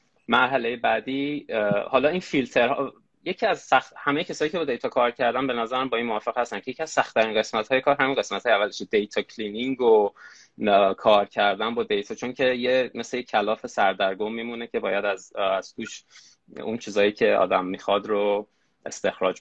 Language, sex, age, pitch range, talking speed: Persian, male, 20-39, 105-135 Hz, 185 wpm